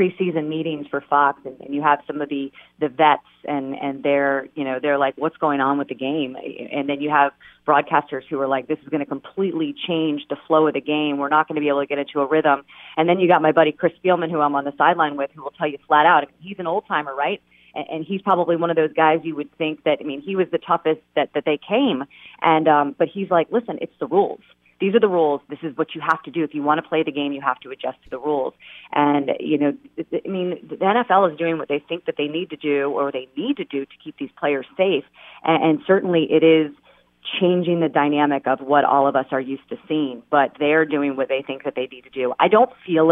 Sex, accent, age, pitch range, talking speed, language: female, American, 30-49, 140-165 Hz, 270 wpm, English